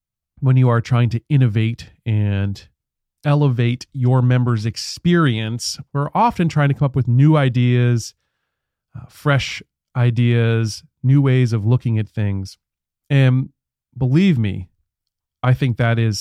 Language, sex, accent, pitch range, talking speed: English, male, American, 110-130 Hz, 135 wpm